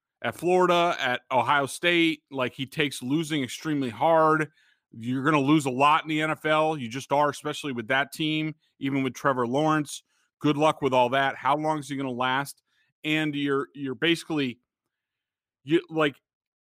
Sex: male